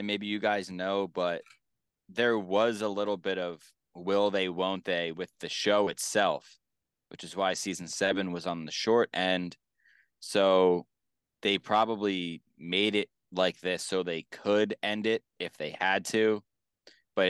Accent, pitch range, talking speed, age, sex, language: American, 90-105 Hz, 160 wpm, 20-39, male, English